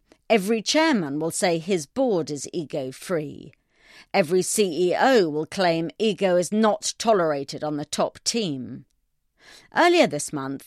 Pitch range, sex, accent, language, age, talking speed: 155-230 Hz, female, British, English, 40-59, 130 wpm